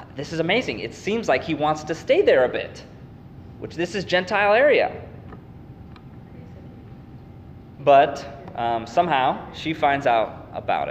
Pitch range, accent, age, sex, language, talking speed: 120-150 Hz, American, 20-39, male, English, 140 wpm